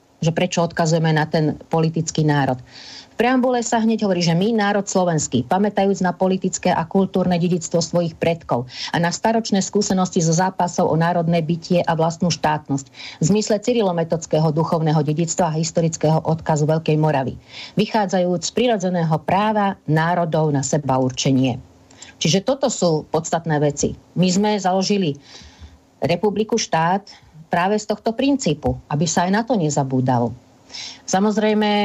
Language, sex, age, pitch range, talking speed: Slovak, female, 40-59, 150-195 Hz, 140 wpm